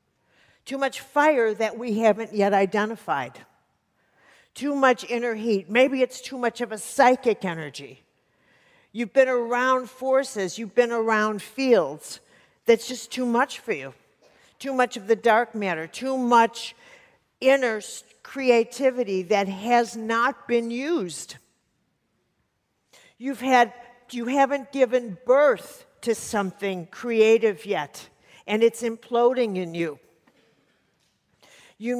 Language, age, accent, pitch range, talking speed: English, 50-69, American, 215-250 Hz, 120 wpm